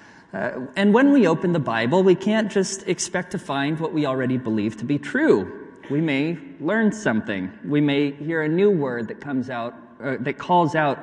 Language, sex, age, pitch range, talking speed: English, male, 30-49, 125-175 Hz, 200 wpm